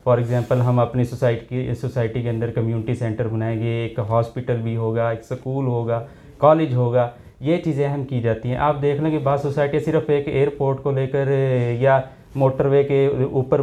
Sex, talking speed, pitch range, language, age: male, 205 wpm, 120-150 Hz, Urdu, 30-49